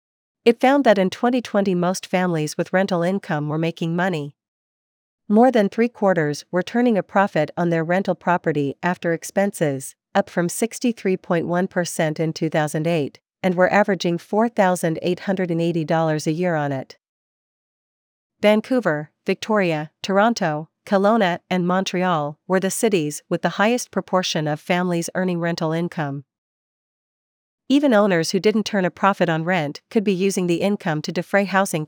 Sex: female